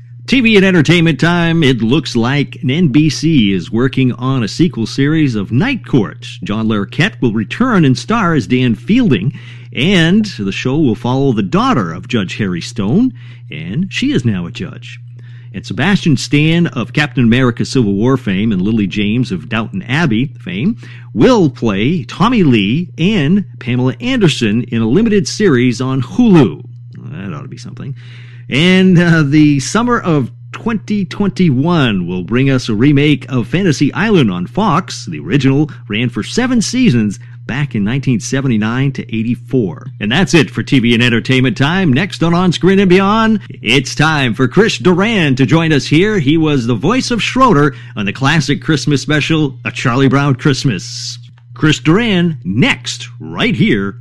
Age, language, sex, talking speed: 50-69, English, male, 165 wpm